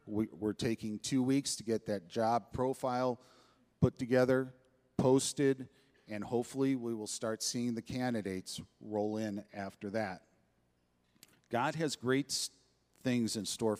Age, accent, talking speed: 40-59, American, 130 wpm